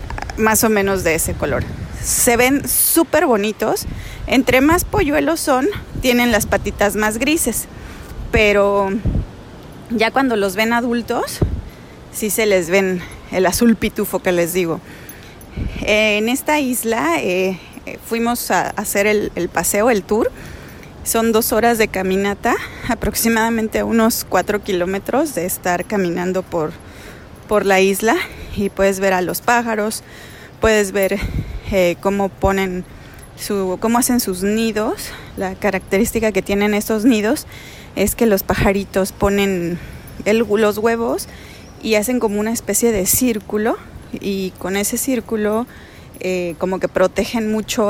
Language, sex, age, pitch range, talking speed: Spanish, female, 30-49, 195-230 Hz, 140 wpm